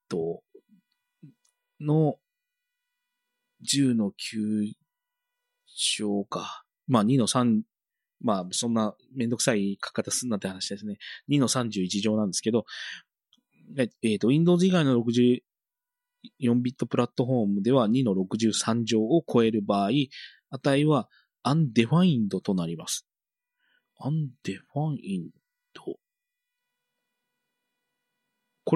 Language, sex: Japanese, male